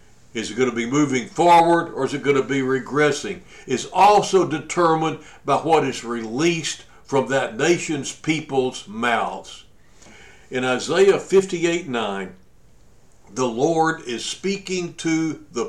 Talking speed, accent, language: 140 wpm, American, English